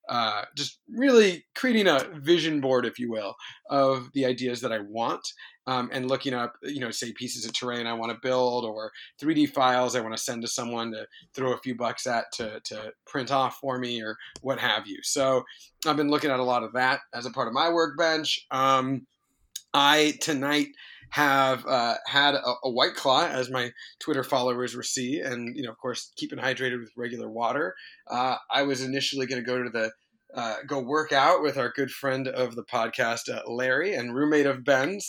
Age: 30-49